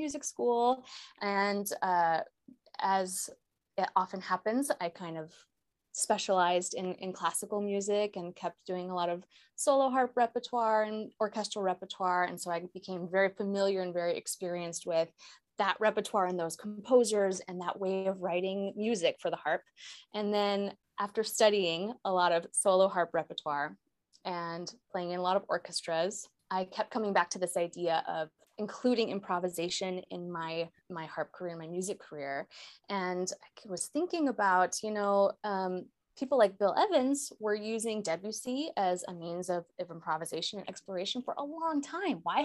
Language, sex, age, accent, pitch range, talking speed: English, female, 20-39, American, 180-235 Hz, 165 wpm